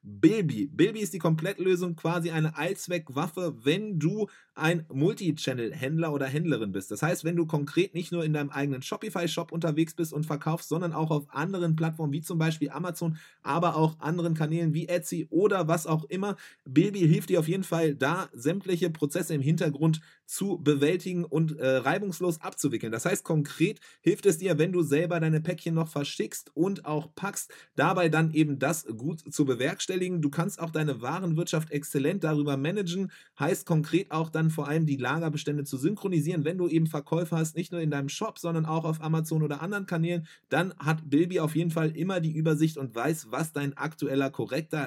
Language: English